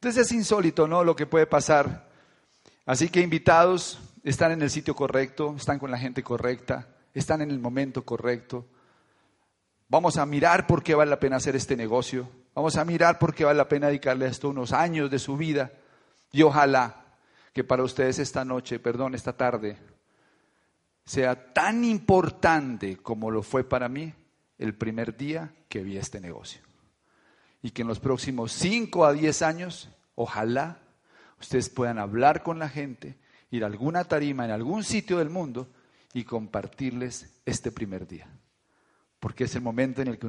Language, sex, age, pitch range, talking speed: Spanish, male, 40-59, 125-150 Hz, 170 wpm